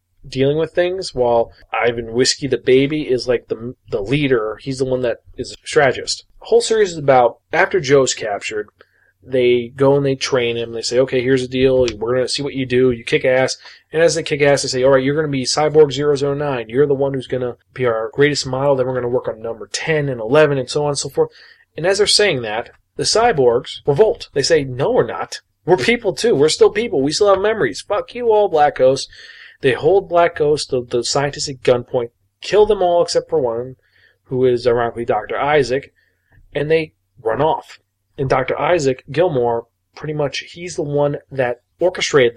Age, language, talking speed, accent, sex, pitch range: 30-49, English, 220 wpm, American, male, 130-210 Hz